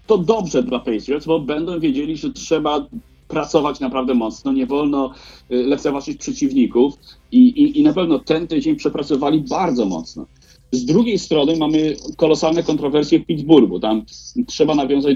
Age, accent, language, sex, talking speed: 40-59, native, Polish, male, 145 wpm